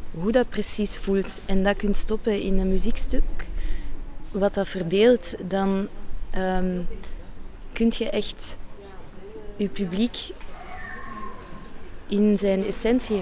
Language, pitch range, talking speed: Dutch, 185-210 Hz, 110 wpm